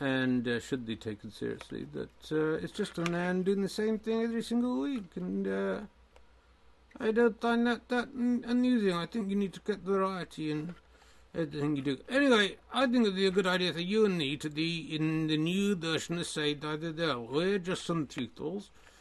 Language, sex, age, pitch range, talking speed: English, male, 60-79, 130-180 Hz, 200 wpm